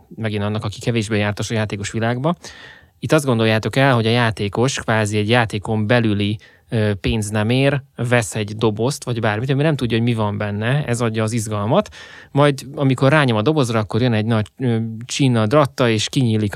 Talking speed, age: 185 wpm, 20-39